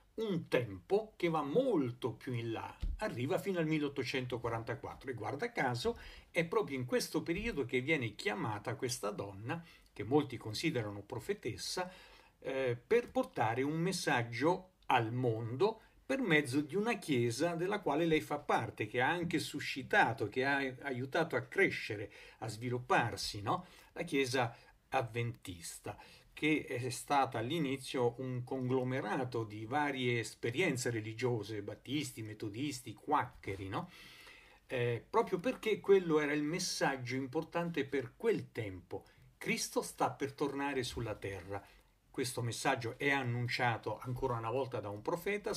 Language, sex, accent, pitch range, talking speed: Italian, male, native, 120-160 Hz, 135 wpm